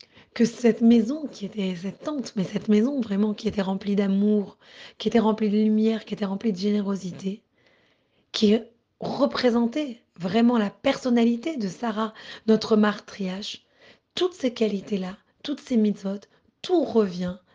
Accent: French